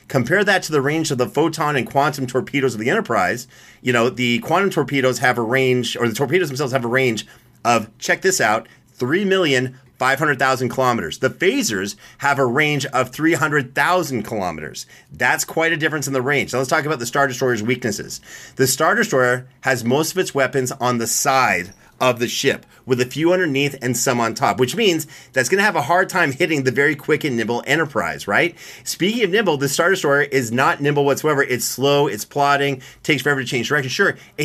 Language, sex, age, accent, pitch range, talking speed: English, male, 30-49, American, 125-150 Hz, 205 wpm